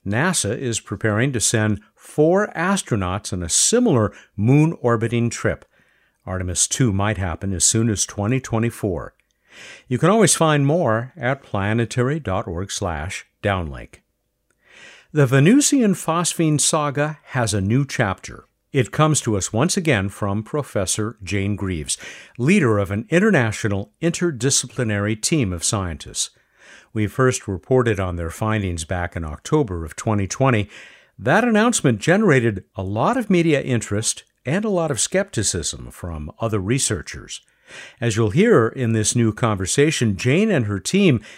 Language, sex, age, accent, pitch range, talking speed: English, male, 60-79, American, 100-155 Hz, 135 wpm